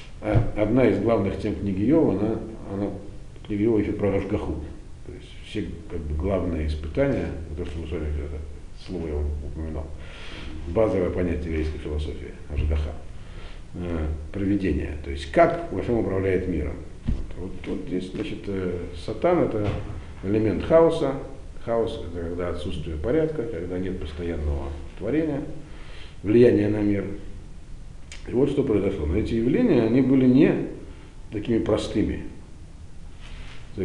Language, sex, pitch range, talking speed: Russian, male, 80-105 Hz, 140 wpm